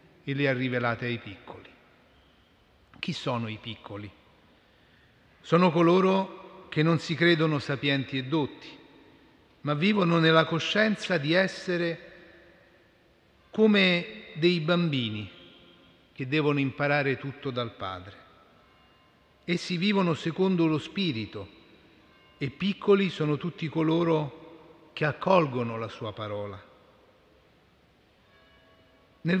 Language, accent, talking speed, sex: Italian, native, 100 wpm, male